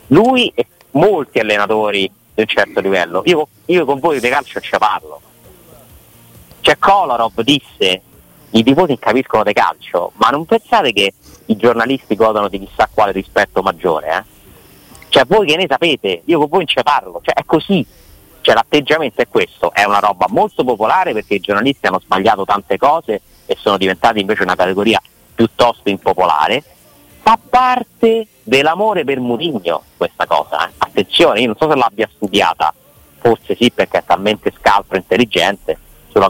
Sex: male